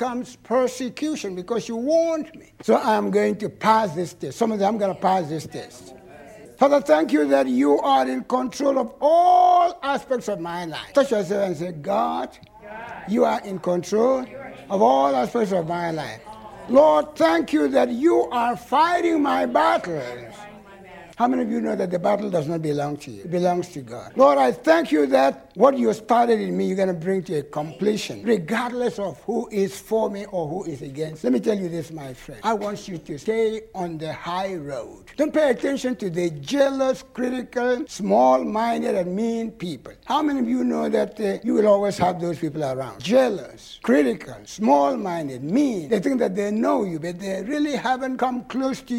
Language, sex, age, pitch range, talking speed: English, male, 60-79, 175-255 Hz, 200 wpm